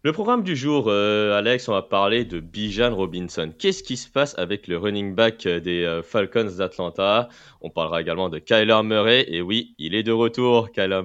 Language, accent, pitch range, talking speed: French, French, 85-115 Hz, 200 wpm